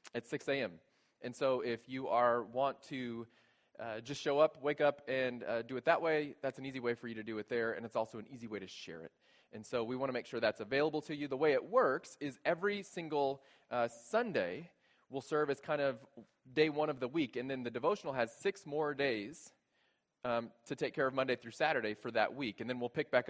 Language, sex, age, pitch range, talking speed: English, male, 20-39, 120-150 Hz, 245 wpm